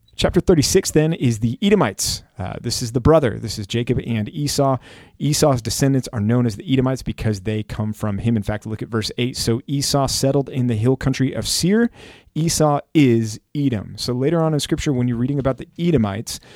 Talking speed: 205 wpm